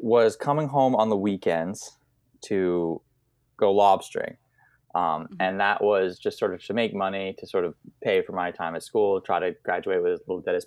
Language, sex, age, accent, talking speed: English, male, 20-39, American, 200 wpm